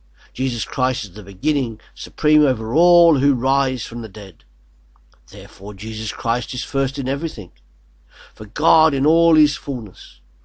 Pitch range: 95-135 Hz